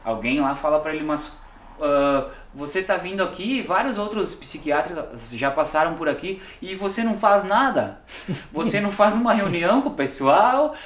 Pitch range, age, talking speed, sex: 145-235 Hz, 20-39, 170 wpm, male